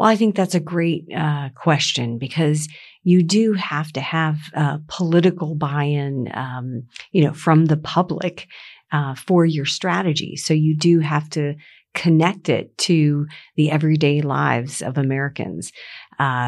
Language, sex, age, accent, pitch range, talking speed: English, female, 50-69, American, 135-165 Hz, 155 wpm